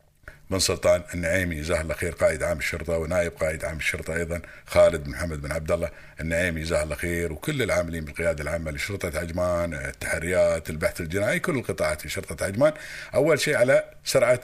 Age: 50-69